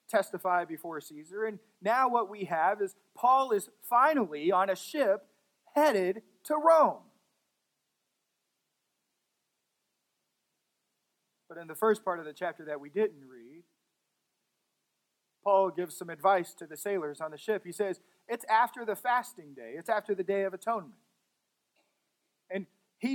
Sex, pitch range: male, 170-220 Hz